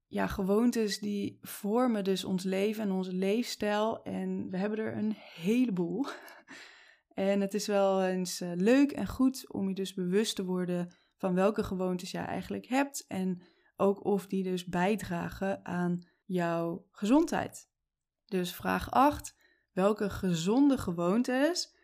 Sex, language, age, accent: female, Dutch, 20-39, Dutch